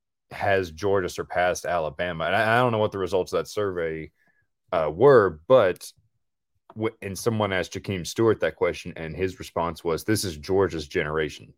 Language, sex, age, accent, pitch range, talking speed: English, male, 30-49, American, 85-100 Hz, 175 wpm